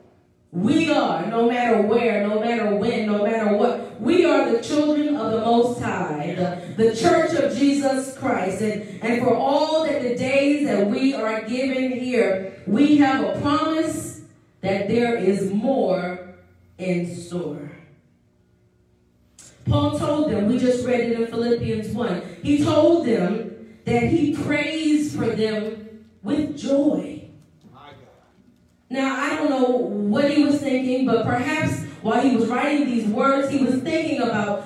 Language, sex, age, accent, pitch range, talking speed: English, female, 40-59, American, 220-285 Hz, 150 wpm